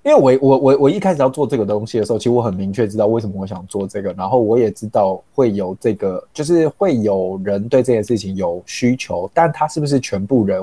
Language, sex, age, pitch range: Chinese, male, 20-39, 100-130 Hz